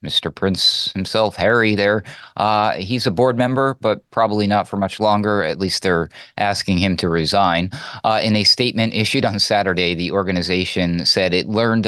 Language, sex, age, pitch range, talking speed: English, male, 30-49, 90-115 Hz, 175 wpm